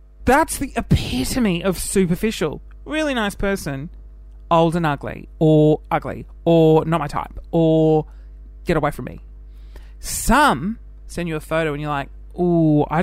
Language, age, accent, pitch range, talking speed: English, 30-49, Australian, 145-210 Hz, 145 wpm